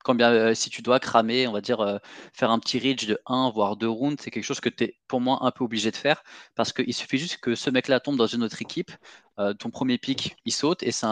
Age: 20-39